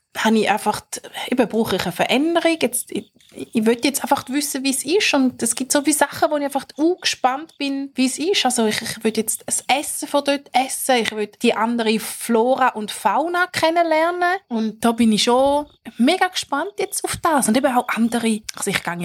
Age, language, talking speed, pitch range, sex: 20-39, German, 215 wpm, 210-285 Hz, female